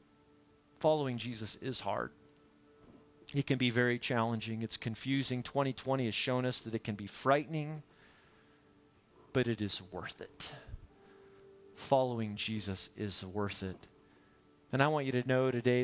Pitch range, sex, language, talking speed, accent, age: 100-130 Hz, male, English, 140 wpm, American, 40-59